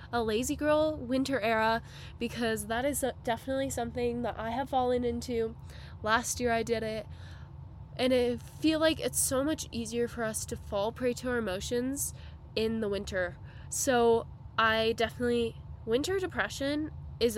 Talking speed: 155 wpm